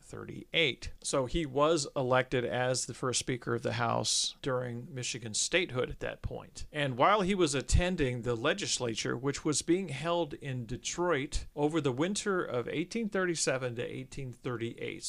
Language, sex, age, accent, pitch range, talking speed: English, male, 40-59, American, 120-150 Hz, 150 wpm